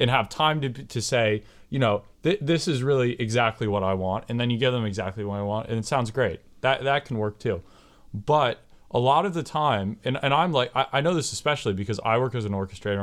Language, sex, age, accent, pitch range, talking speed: English, male, 20-39, American, 100-125 Hz, 255 wpm